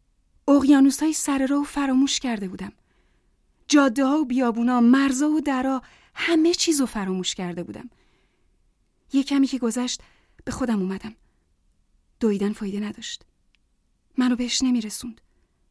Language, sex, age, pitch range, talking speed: Persian, female, 30-49, 205-270 Hz, 130 wpm